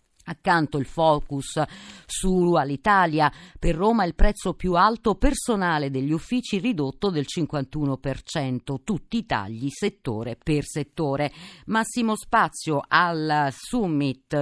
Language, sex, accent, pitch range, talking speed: Italian, female, native, 145-195 Hz, 110 wpm